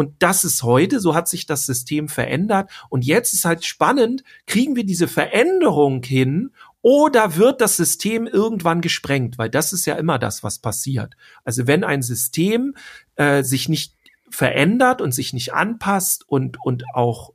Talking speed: 170 wpm